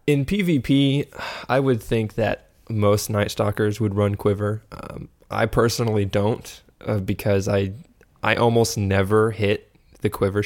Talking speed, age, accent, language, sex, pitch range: 145 wpm, 20-39, American, English, male, 100-115 Hz